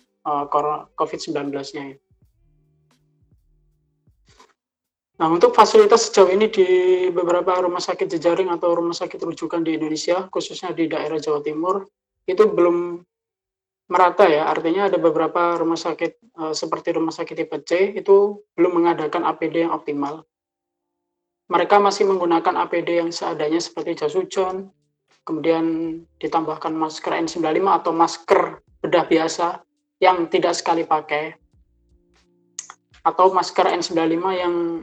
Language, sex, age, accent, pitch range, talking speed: Indonesian, male, 20-39, native, 155-180 Hz, 115 wpm